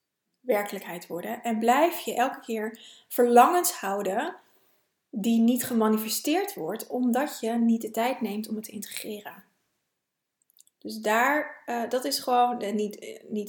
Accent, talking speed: Dutch, 140 wpm